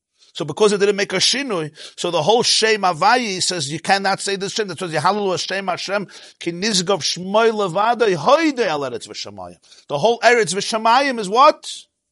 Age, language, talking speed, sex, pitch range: 50-69, English, 175 wpm, male, 180-235 Hz